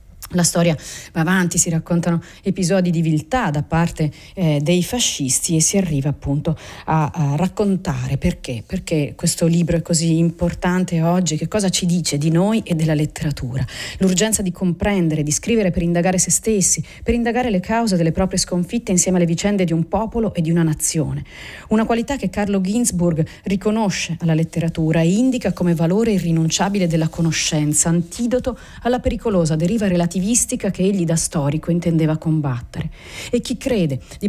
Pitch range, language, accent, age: 160-205 Hz, Italian, native, 40-59